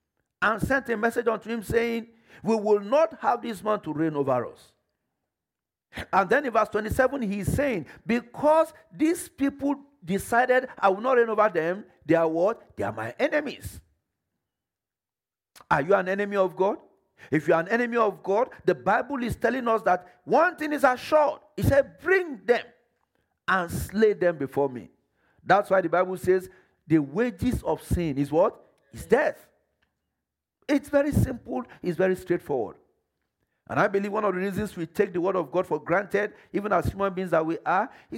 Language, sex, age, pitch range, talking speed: English, male, 50-69, 160-235 Hz, 180 wpm